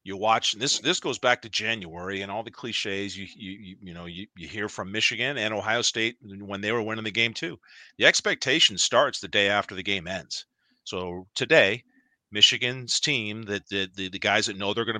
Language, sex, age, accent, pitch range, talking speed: English, male, 40-59, American, 100-125 Hz, 210 wpm